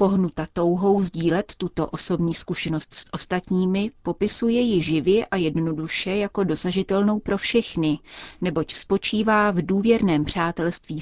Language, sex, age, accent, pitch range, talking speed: Czech, female, 30-49, native, 165-205 Hz, 120 wpm